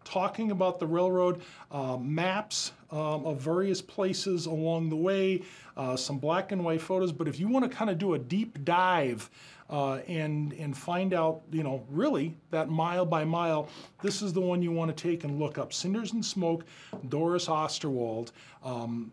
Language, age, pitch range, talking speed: English, 40-59, 155-210 Hz, 185 wpm